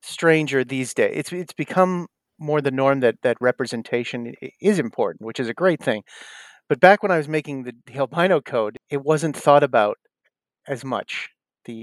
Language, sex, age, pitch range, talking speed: English, male, 40-59, 125-165 Hz, 185 wpm